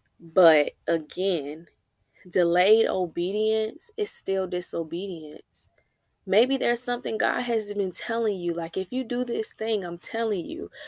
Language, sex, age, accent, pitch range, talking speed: English, female, 20-39, American, 175-220 Hz, 130 wpm